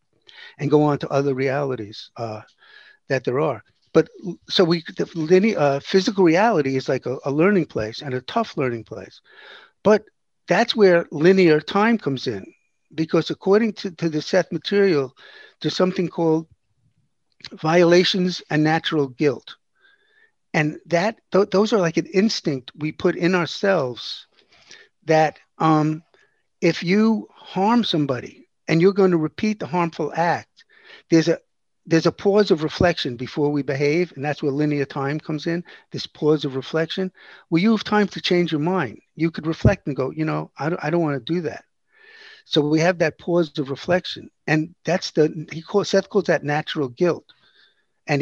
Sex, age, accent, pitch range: male, 50-69, American, 145-185 Hz